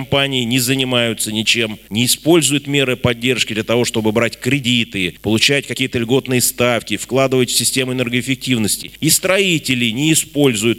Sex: male